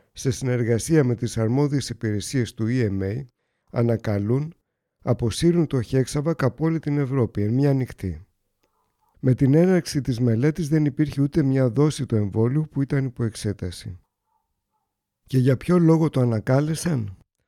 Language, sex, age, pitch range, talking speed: Greek, male, 50-69, 110-145 Hz, 135 wpm